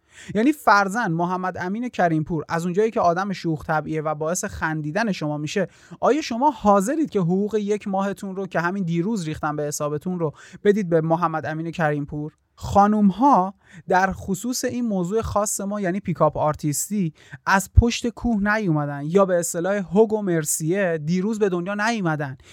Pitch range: 155-200 Hz